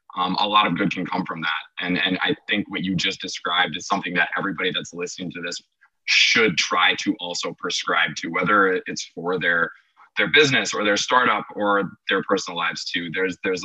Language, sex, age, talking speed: English, male, 20-39, 205 wpm